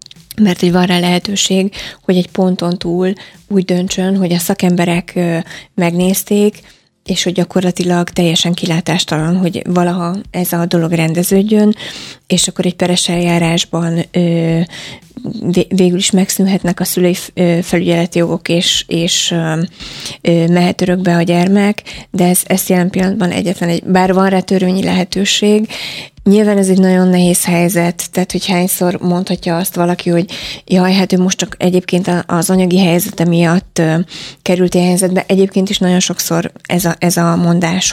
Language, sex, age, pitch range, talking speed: Hungarian, female, 20-39, 175-190 Hz, 140 wpm